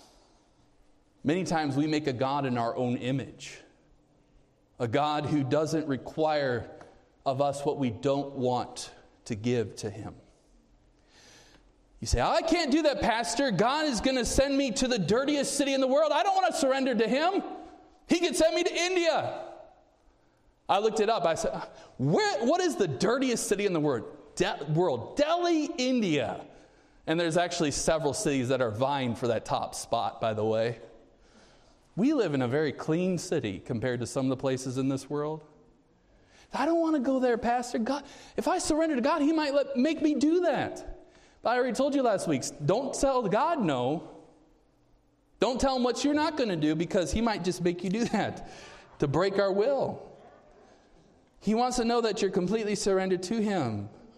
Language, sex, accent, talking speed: English, male, American, 185 wpm